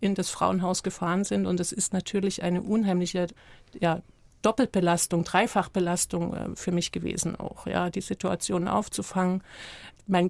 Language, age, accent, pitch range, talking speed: German, 50-69, German, 185-205 Hz, 135 wpm